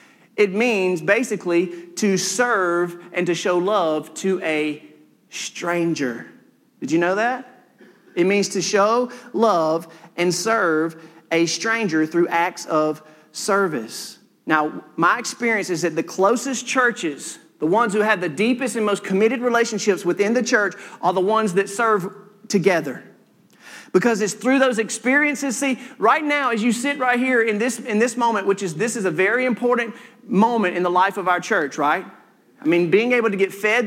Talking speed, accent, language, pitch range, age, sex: 170 wpm, American, English, 190-250 Hz, 40-59, male